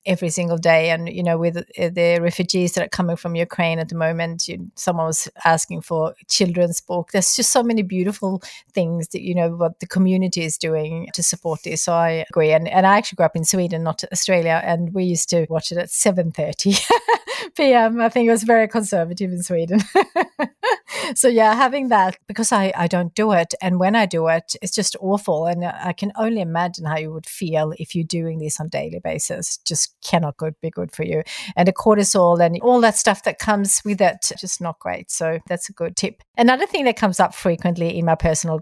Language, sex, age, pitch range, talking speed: English, female, 40-59, 165-205 Hz, 220 wpm